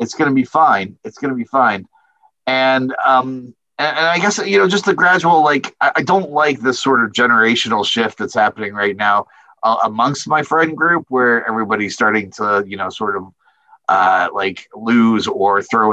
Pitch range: 95-130 Hz